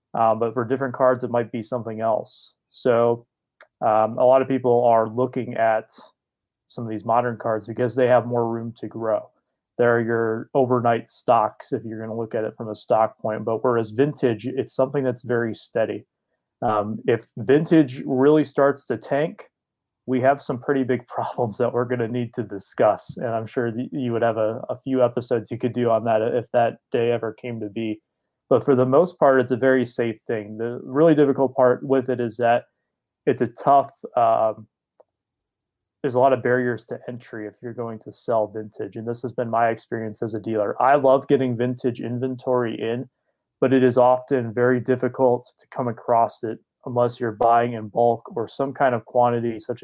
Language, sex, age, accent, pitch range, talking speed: English, male, 30-49, American, 115-130 Hz, 200 wpm